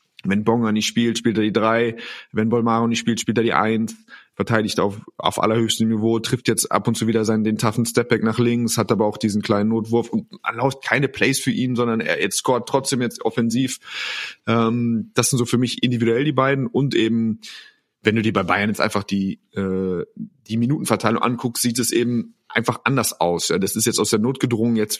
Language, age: German, 30-49